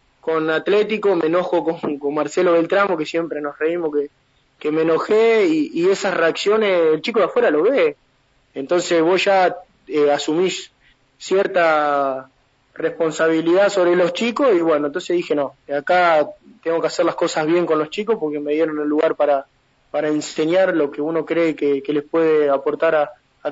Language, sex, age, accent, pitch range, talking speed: Spanish, male, 20-39, Argentinian, 155-210 Hz, 180 wpm